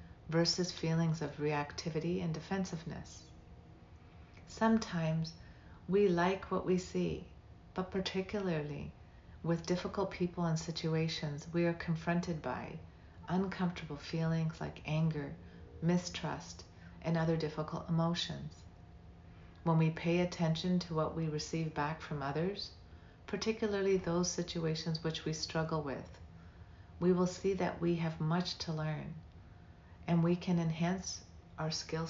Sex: female